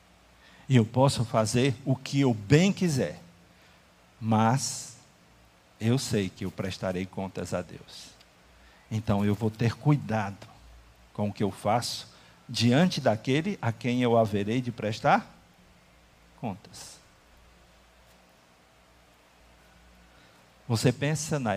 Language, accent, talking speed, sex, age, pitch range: Portuguese, Brazilian, 110 wpm, male, 50-69, 95-135 Hz